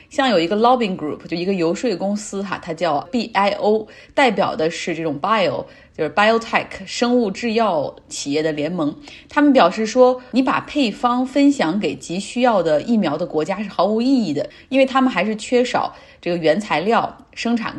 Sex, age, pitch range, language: female, 30-49, 175-250 Hz, Chinese